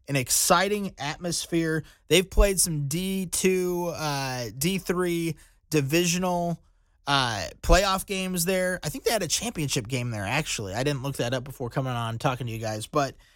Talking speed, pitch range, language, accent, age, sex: 160 wpm, 150-195 Hz, English, American, 20-39, male